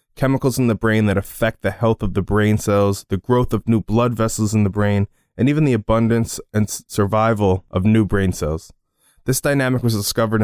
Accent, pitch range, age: American, 100-120 Hz, 20-39